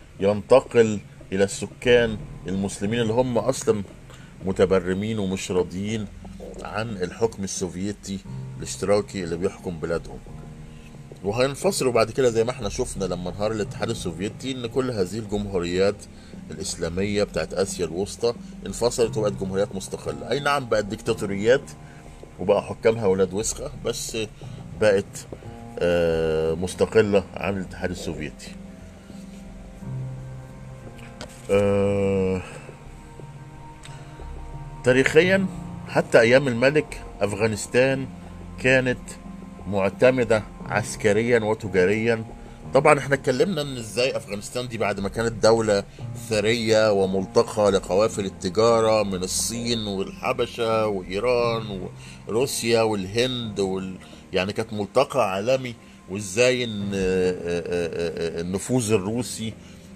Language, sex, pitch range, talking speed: Arabic, male, 95-120 Hz, 90 wpm